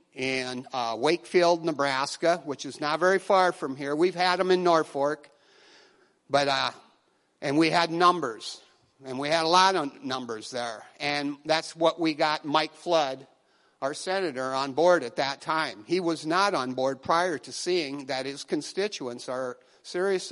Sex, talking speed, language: male, 170 wpm, English